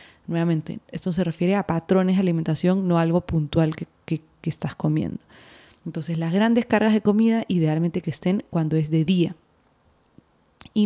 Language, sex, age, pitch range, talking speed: Spanish, female, 20-39, 165-185 Hz, 170 wpm